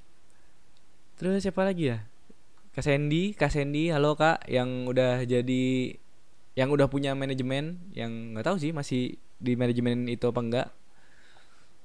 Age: 10-29